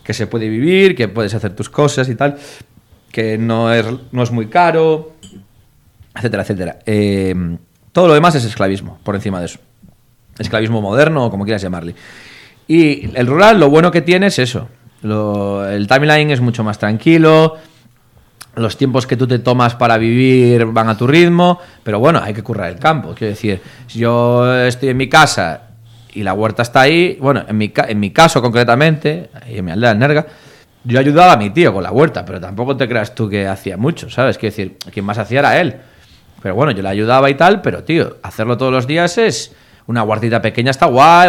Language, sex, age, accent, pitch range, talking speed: Spanish, male, 30-49, Spanish, 105-140 Hz, 200 wpm